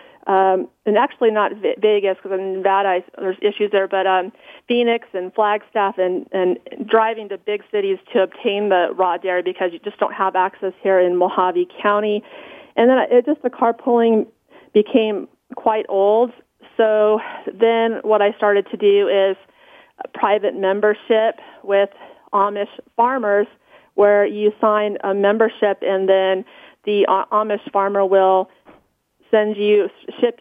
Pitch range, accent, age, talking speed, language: 195-230 Hz, American, 40-59, 150 wpm, English